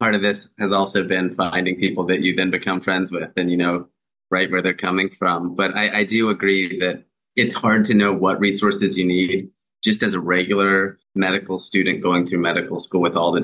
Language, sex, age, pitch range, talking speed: English, male, 20-39, 85-95 Hz, 220 wpm